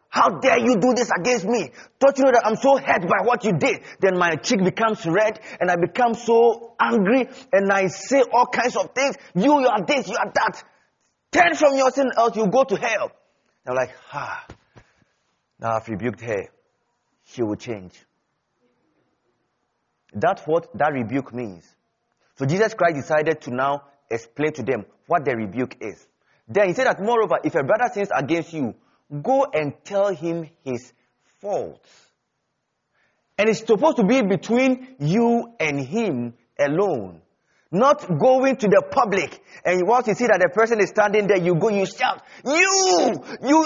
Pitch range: 165-270 Hz